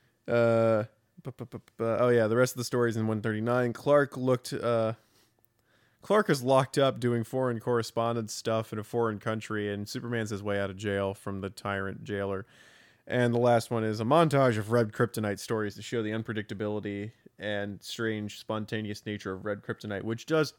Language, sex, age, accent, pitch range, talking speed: English, male, 20-39, American, 110-145 Hz, 190 wpm